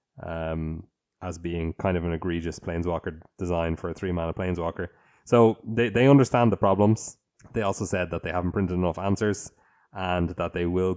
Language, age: English, 20-39